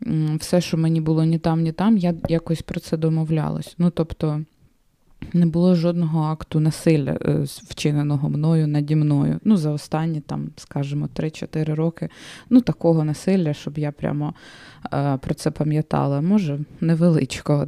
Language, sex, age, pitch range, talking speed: Ukrainian, female, 20-39, 155-180 Hz, 145 wpm